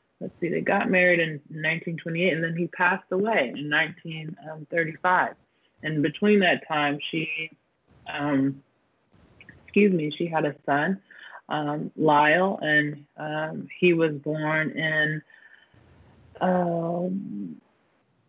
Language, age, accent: English, 20-39, American